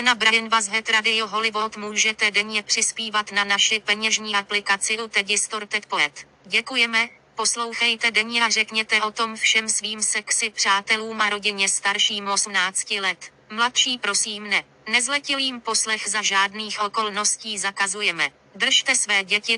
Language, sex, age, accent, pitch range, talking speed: English, female, 20-39, Czech, 205-225 Hz, 130 wpm